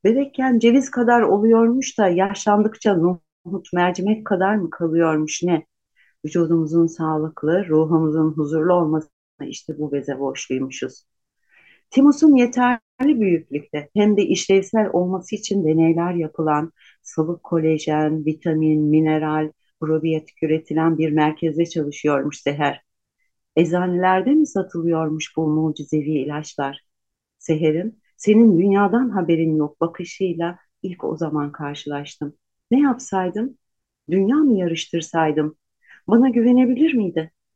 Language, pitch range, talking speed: Turkish, 155-215 Hz, 105 wpm